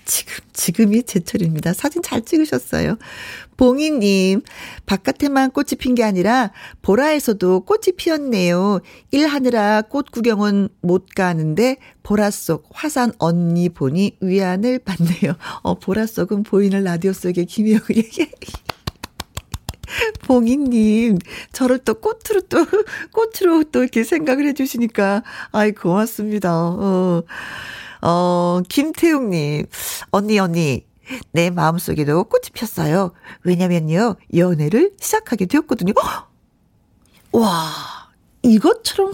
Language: Korean